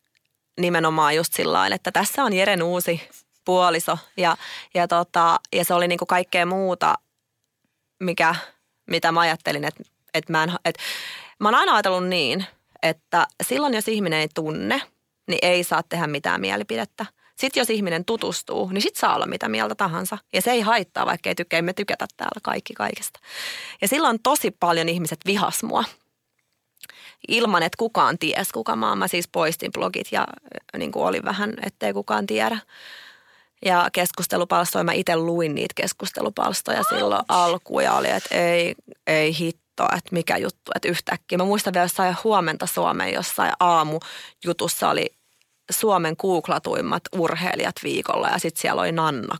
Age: 30-49